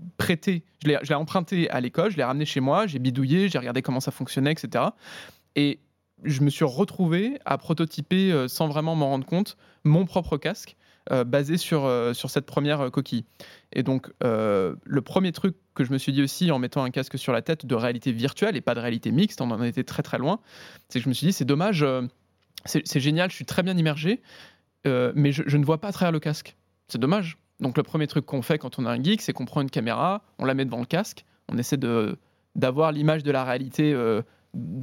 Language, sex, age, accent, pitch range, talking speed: French, male, 20-39, French, 130-165 Hz, 240 wpm